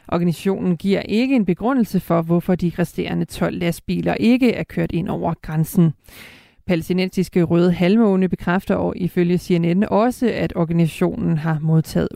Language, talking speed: Danish, 145 wpm